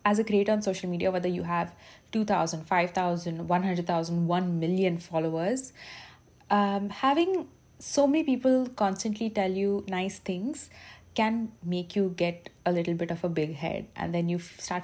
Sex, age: female, 30-49